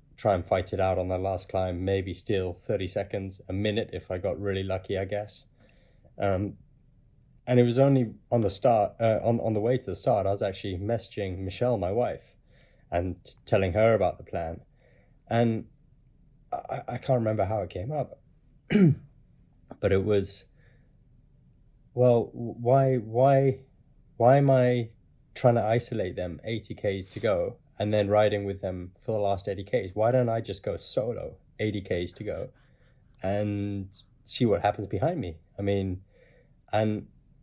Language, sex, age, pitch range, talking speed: English, male, 20-39, 95-125 Hz, 170 wpm